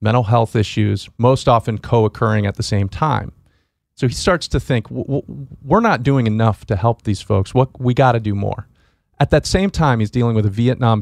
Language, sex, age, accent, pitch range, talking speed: English, male, 40-59, American, 105-130 Hz, 220 wpm